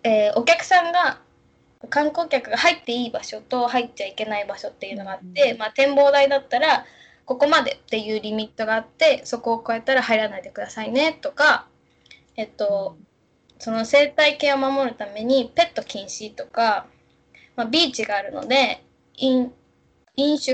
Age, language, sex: 10-29, Japanese, female